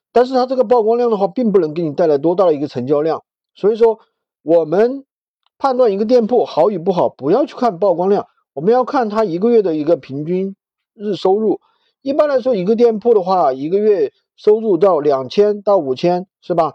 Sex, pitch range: male, 170-250 Hz